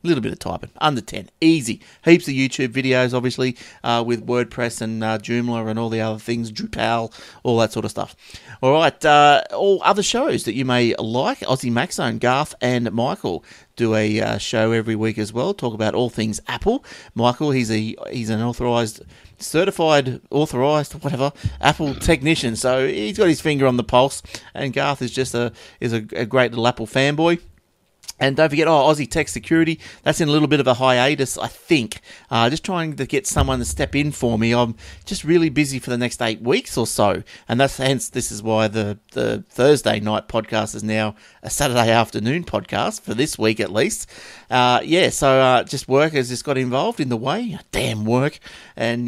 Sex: male